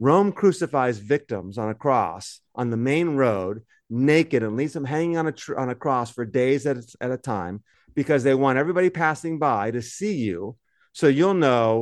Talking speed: 190 wpm